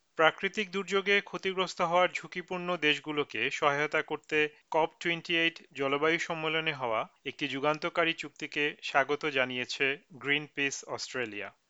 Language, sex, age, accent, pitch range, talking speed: Bengali, male, 40-59, native, 140-170 Hz, 110 wpm